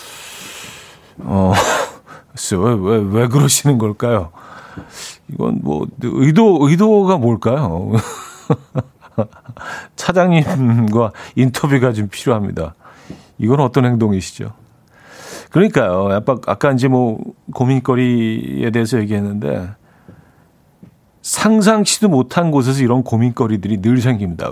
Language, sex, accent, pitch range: Korean, male, native, 110-140 Hz